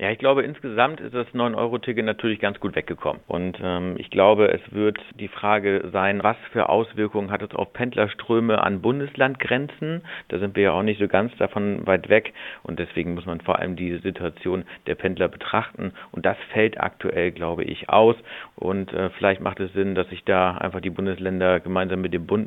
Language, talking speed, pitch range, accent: German, 200 wpm, 90-105 Hz, German